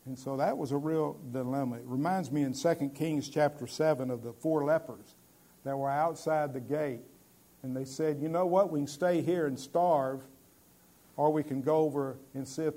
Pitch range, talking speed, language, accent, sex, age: 125-155 Hz, 205 wpm, English, American, male, 50-69